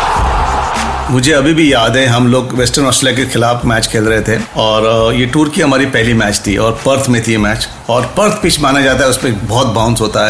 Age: 40-59